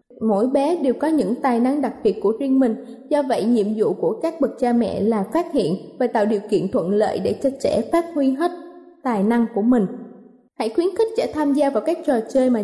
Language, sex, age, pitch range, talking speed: Vietnamese, female, 20-39, 225-295 Hz, 240 wpm